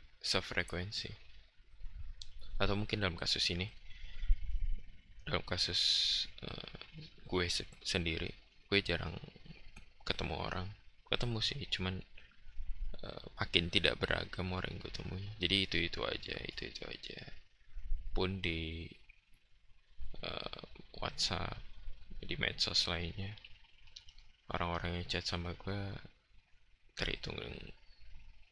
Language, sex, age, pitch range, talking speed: Indonesian, male, 20-39, 85-100 Hz, 100 wpm